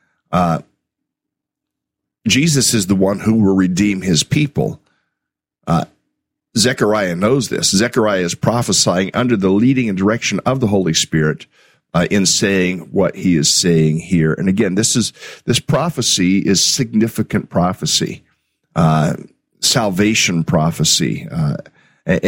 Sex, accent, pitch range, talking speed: male, American, 90-115 Hz, 125 wpm